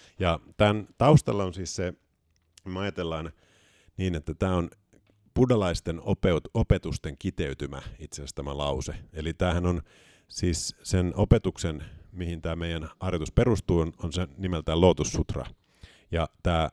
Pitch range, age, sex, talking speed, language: 80-95 Hz, 50-69, male, 135 wpm, Finnish